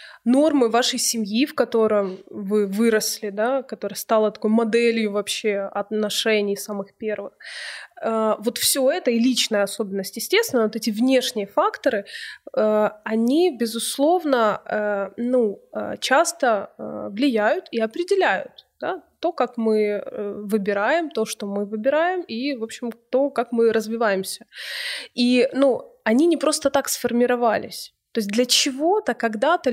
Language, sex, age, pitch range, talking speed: Ukrainian, female, 20-39, 215-280 Hz, 125 wpm